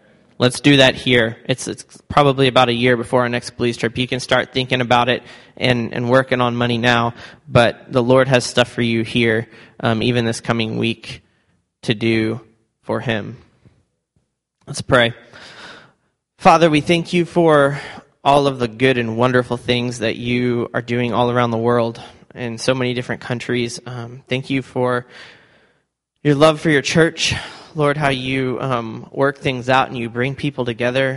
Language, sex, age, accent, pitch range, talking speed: English, male, 20-39, American, 120-135 Hz, 175 wpm